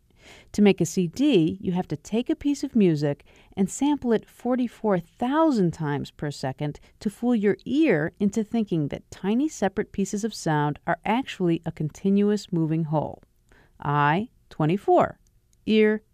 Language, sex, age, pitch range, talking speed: English, female, 50-69, 170-250 Hz, 150 wpm